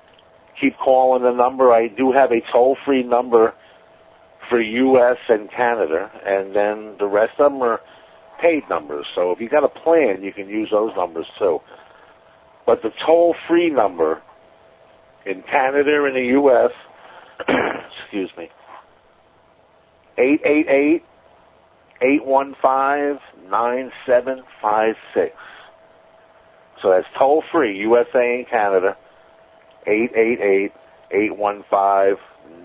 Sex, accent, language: male, American, English